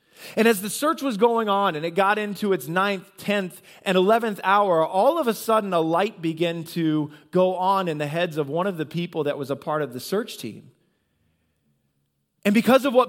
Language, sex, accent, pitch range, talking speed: English, male, American, 170-220 Hz, 215 wpm